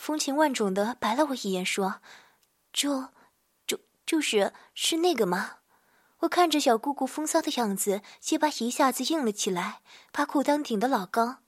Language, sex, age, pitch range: Chinese, female, 20-39, 215-290 Hz